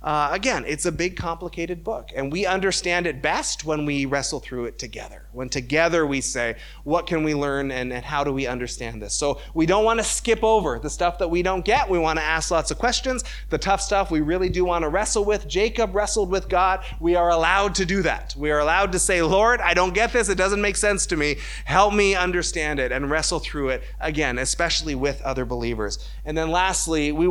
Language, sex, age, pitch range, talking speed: English, male, 30-49, 140-190 Hz, 235 wpm